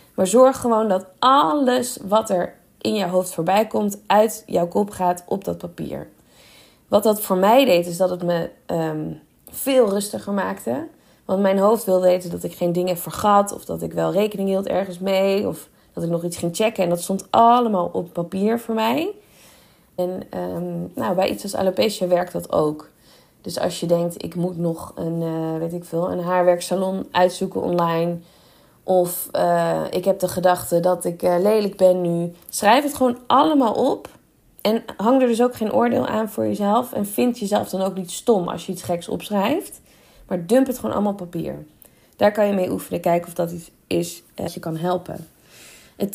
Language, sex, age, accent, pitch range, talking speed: Dutch, female, 20-39, Dutch, 175-210 Hz, 190 wpm